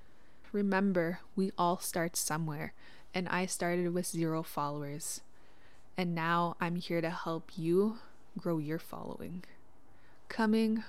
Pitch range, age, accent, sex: 175-220 Hz, 20-39, American, female